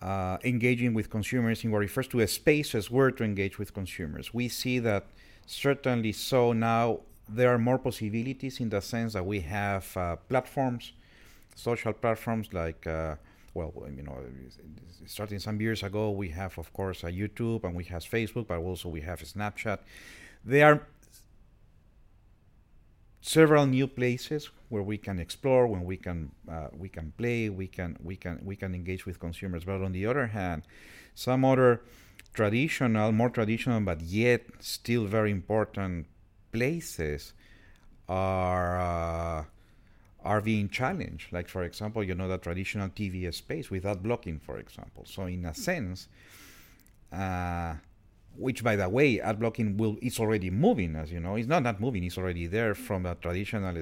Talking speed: 165 wpm